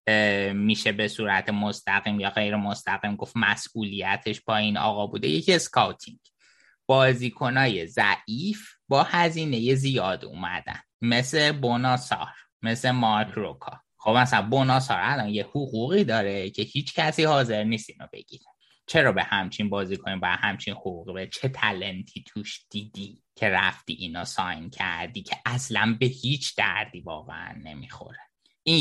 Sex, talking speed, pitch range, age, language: male, 135 wpm, 105-135 Hz, 20-39, Persian